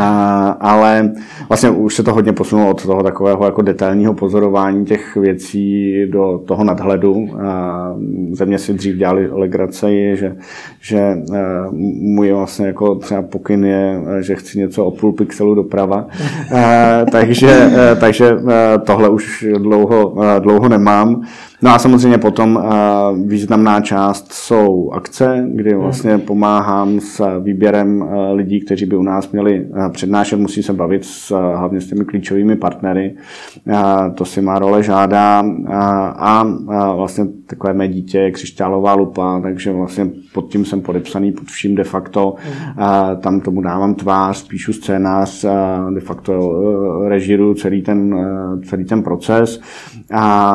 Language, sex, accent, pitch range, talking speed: Czech, male, native, 95-105 Hz, 140 wpm